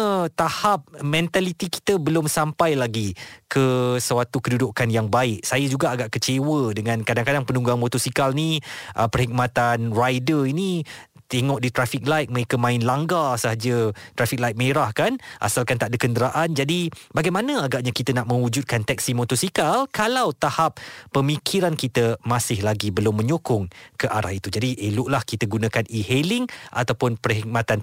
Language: Malay